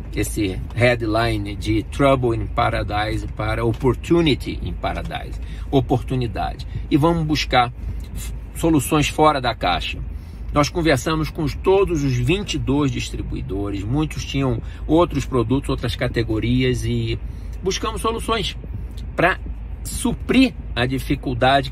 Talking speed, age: 105 wpm, 50-69